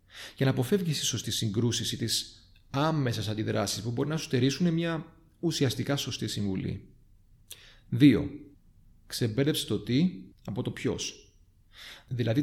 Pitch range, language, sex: 105-145 Hz, Greek, male